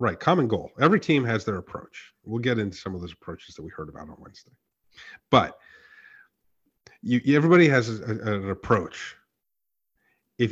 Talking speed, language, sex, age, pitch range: 170 wpm, English, male, 30-49, 100-130 Hz